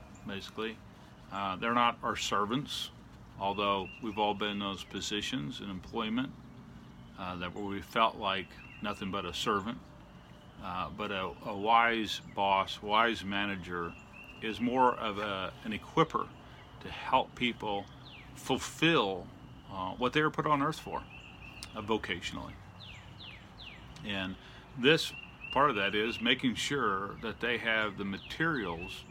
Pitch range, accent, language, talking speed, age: 95-120 Hz, American, English, 130 wpm, 40-59